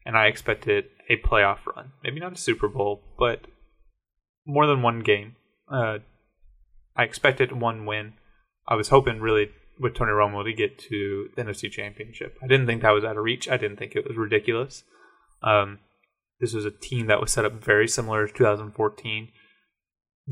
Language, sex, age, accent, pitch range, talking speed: English, male, 20-39, American, 105-125 Hz, 180 wpm